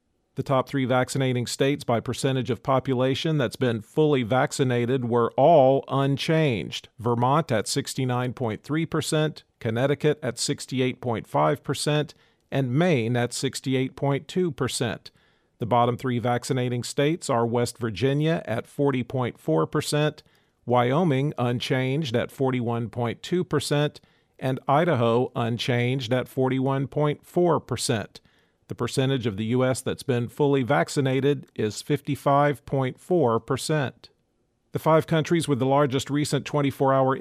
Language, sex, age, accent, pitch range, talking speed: English, male, 40-59, American, 120-145 Hz, 105 wpm